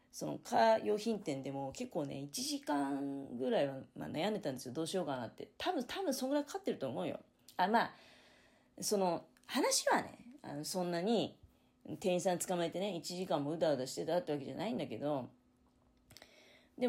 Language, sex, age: Japanese, female, 30-49